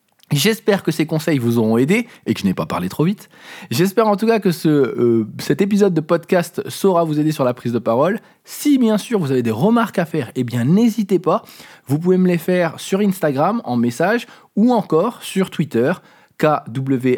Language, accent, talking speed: French, French, 215 wpm